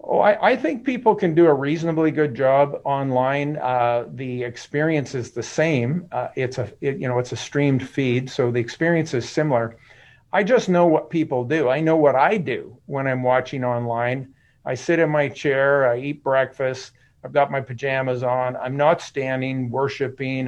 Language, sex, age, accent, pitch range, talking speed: English, male, 50-69, American, 125-155 Hz, 190 wpm